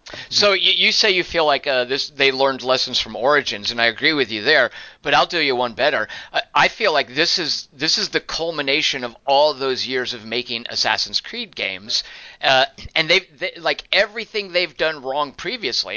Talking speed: 205 wpm